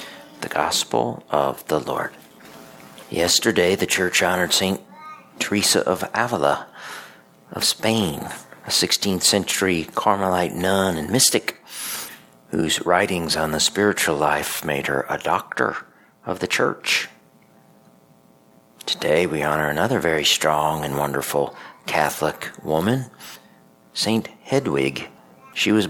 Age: 50-69